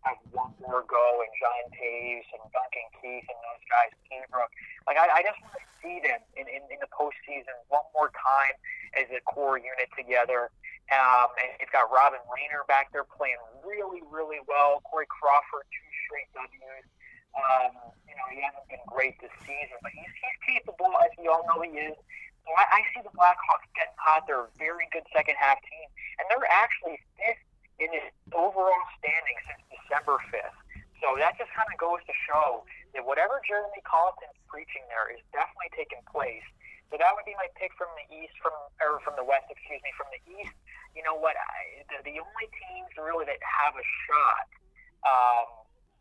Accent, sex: American, male